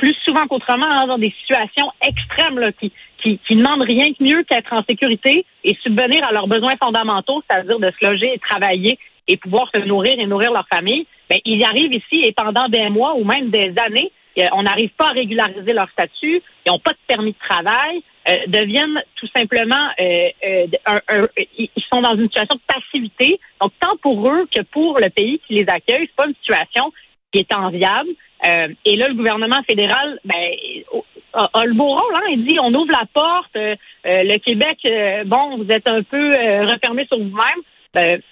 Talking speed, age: 210 wpm, 40-59